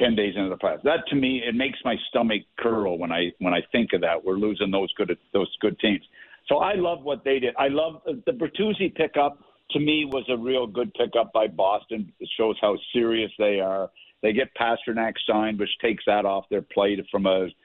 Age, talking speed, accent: 60-79, 220 wpm, American